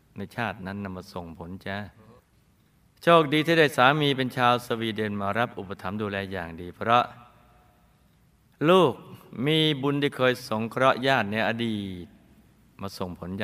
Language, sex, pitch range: Thai, male, 95-120 Hz